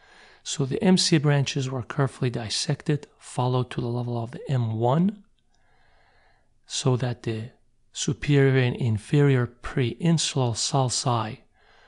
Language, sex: English, male